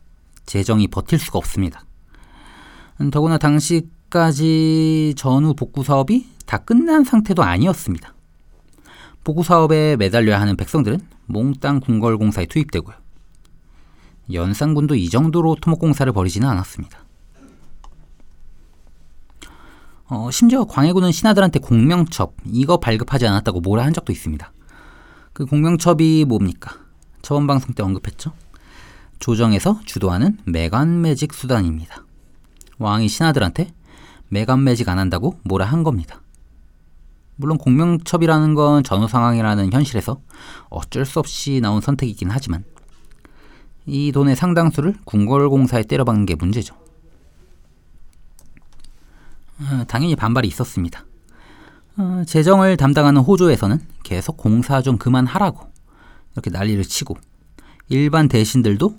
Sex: male